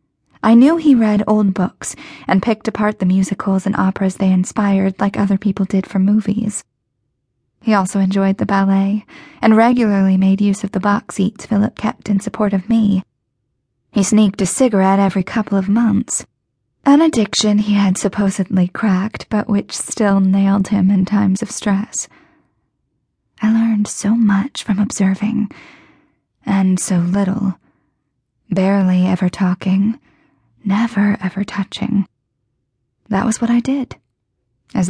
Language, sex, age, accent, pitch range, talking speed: English, female, 20-39, American, 185-215 Hz, 145 wpm